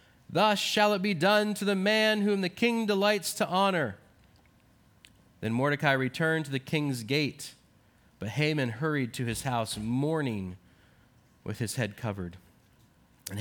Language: English